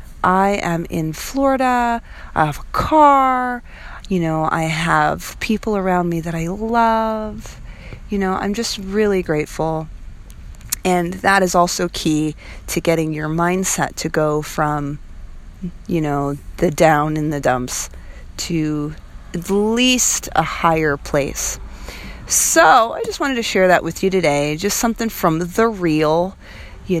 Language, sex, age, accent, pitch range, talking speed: English, female, 30-49, American, 155-205 Hz, 145 wpm